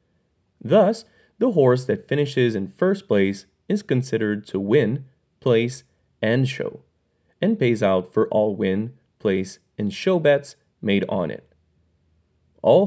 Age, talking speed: 30-49, 135 wpm